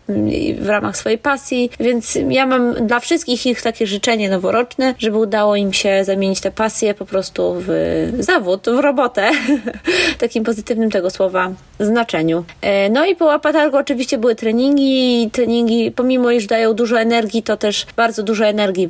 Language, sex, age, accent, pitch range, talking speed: Polish, female, 20-39, native, 210-250 Hz, 160 wpm